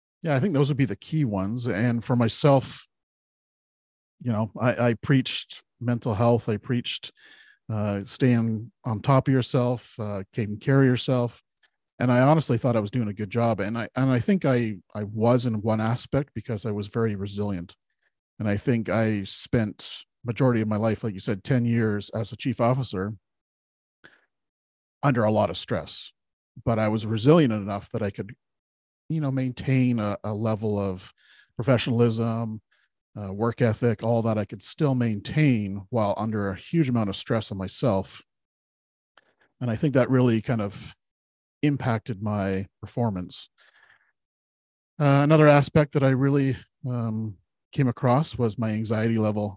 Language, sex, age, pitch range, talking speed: English, male, 40-59, 105-125 Hz, 165 wpm